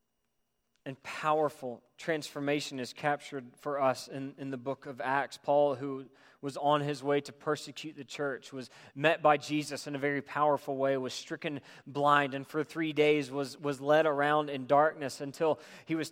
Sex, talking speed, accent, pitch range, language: male, 180 wpm, American, 140-170 Hz, English